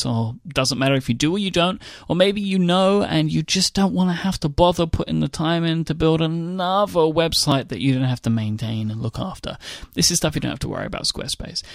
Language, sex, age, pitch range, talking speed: English, male, 30-49, 125-165 Hz, 250 wpm